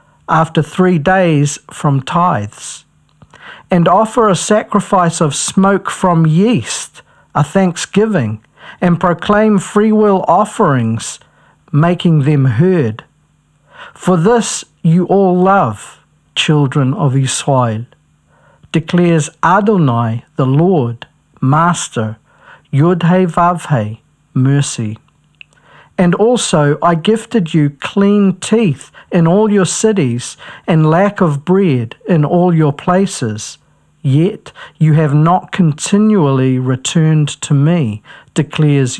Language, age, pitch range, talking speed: English, 50-69, 145-190 Hz, 105 wpm